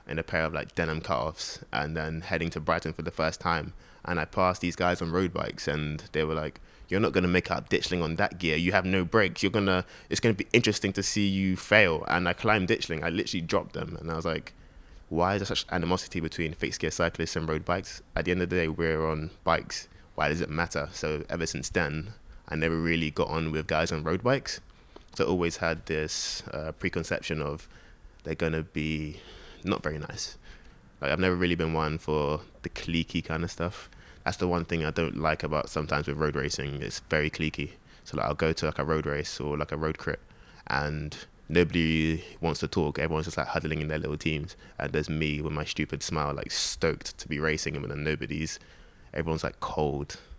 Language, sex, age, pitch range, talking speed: English, male, 20-39, 75-85 Hz, 230 wpm